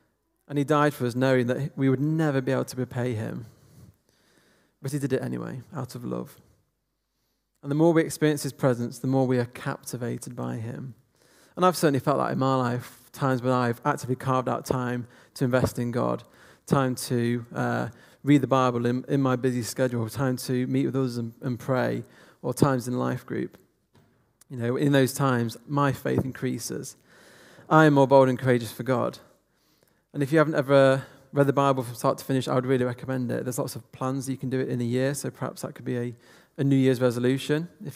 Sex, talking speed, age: male, 215 wpm, 30-49